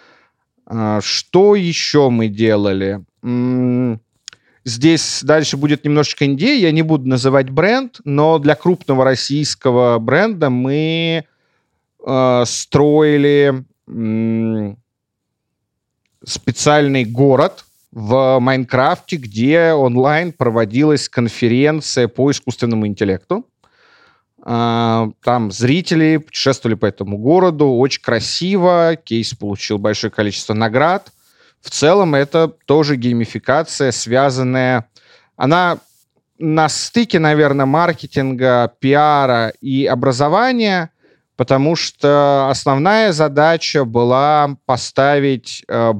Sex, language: male, Russian